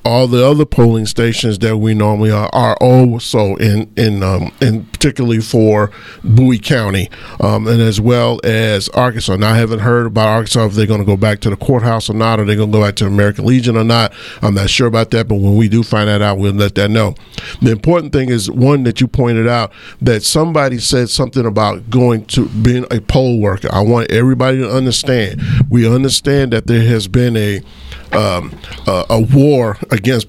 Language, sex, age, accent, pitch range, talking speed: English, male, 40-59, American, 110-135 Hz, 210 wpm